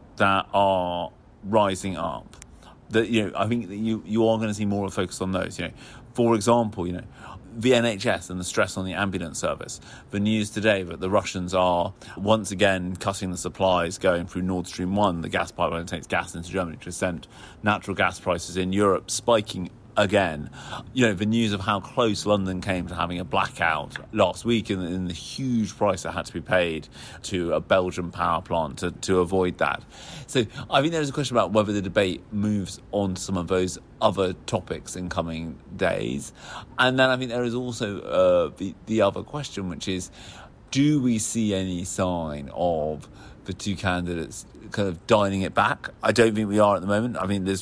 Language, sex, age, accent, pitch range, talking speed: English, male, 30-49, British, 90-110 Hz, 210 wpm